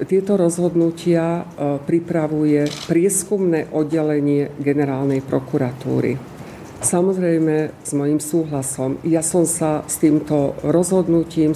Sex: female